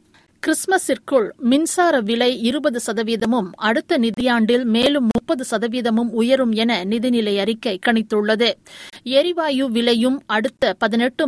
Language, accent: Tamil, native